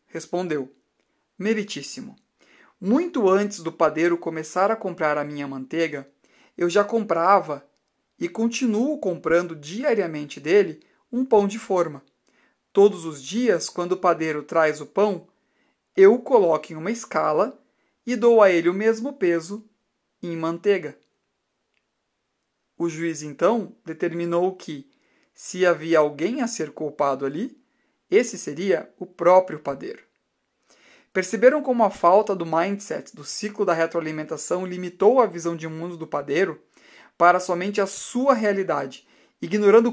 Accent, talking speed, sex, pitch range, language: Brazilian, 135 wpm, male, 160-215 Hz, Portuguese